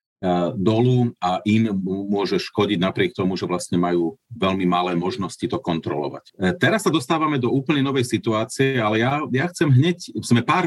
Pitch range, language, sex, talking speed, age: 100-130 Hz, Slovak, male, 155 wpm, 40-59